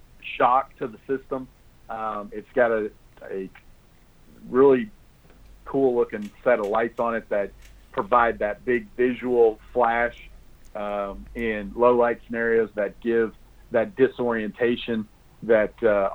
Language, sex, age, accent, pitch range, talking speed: English, male, 40-59, American, 105-120 Hz, 125 wpm